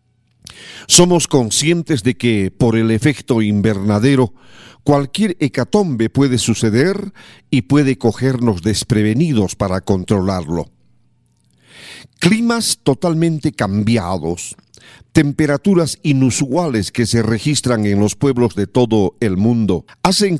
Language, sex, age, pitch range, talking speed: Spanish, male, 50-69, 105-140 Hz, 100 wpm